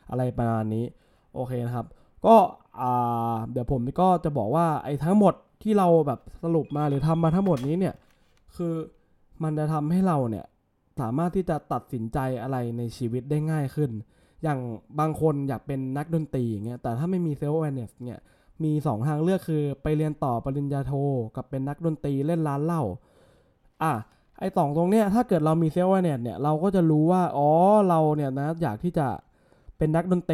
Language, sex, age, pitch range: English, male, 20-39, 130-170 Hz